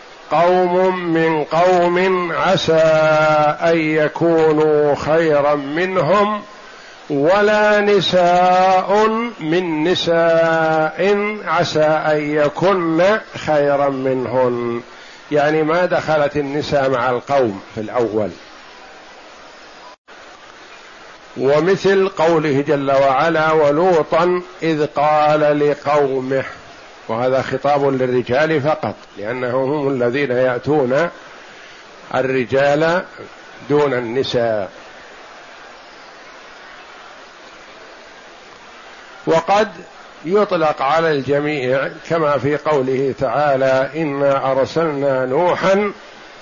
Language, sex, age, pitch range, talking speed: Arabic, male, 50-69, 135-165 Hz, 70 wpm